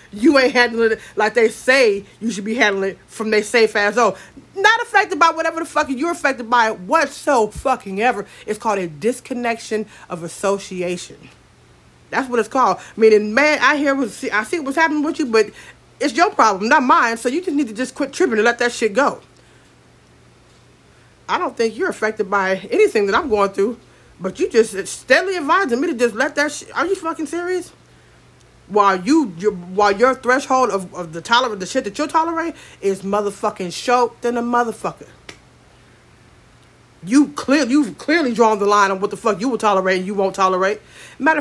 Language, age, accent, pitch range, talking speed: English, 40-59, American, 205-290 Hz, 195 wpm